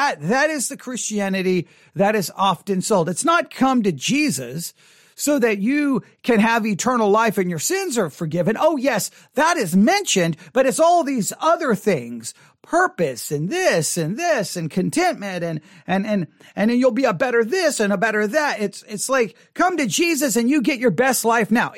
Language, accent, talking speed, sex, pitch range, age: English, American, 190 wpm, male, 195-280 Hz, 40-59